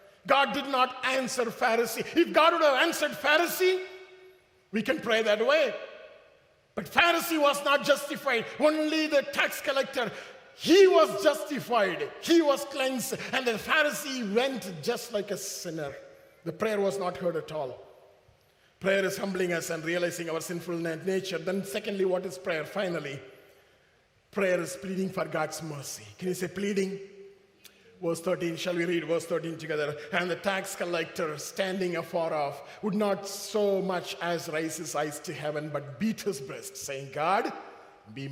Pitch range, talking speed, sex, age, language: 180-295 Hz, 160 wpm, male, 50-69, English